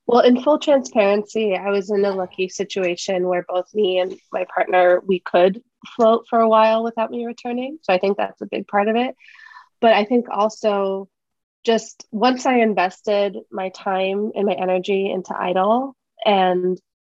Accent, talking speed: American, 175 wpm